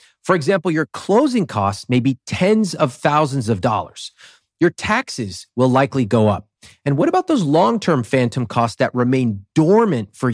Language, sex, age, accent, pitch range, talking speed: English, male, 30-49, American, 105-170 Hz, 170 wpm